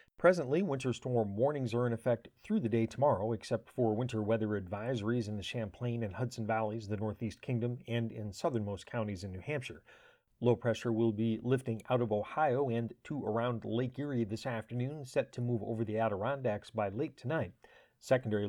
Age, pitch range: 40-59, 110-125 Hz